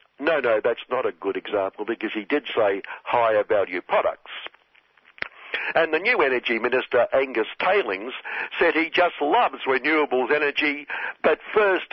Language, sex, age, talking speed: English, male, 60-79, 145 wpm